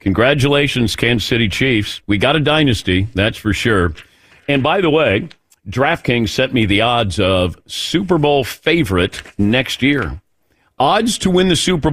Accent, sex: American, male